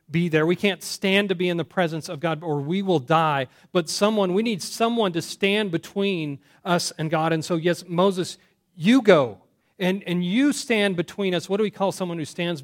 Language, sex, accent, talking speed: English, male, American, 220 wpm